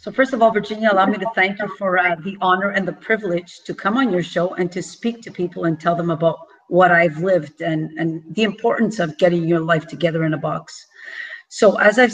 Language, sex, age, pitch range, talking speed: English, female, 40-59, 180-250 Hz, 240 wpm